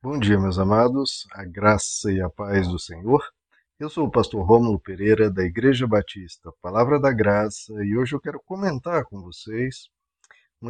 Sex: male